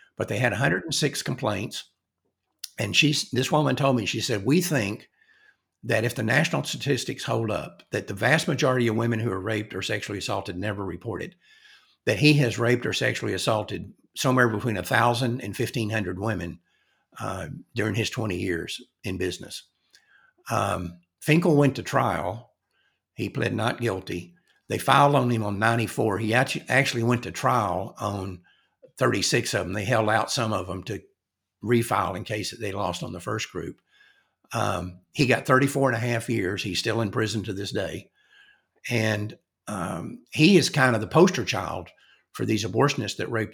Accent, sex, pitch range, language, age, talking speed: American, male, 100-130 Hz, English, 60-79, 170 wpm